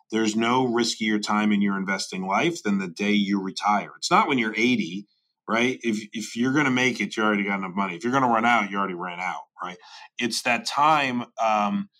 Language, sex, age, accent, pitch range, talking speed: English, male, 30-49, American, 100-120 Hz, 230 wpm